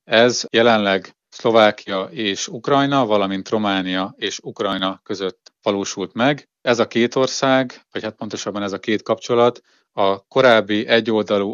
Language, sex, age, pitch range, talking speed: Hungarian, male, 30-49, 100-110 Hz, 135 wpm